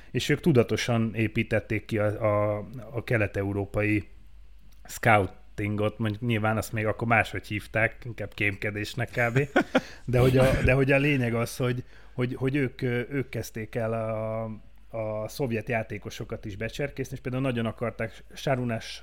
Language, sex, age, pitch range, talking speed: Hungarian, male, 30-49, 100-120 Hz, 140 wpm